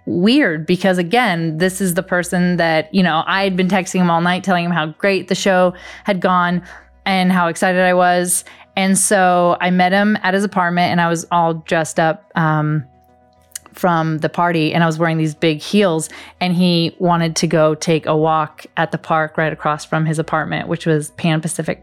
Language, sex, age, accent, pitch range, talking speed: English, female, 20-39, American, 165-195 Hz, 205 wpm